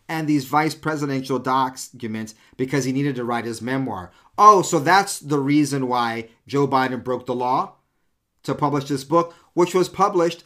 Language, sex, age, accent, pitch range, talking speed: English, male, 40-59, American, 110-140 Hz, 170 wpm